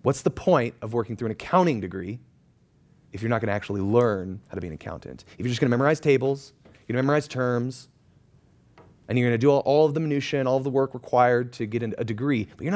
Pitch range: 105-145 Hz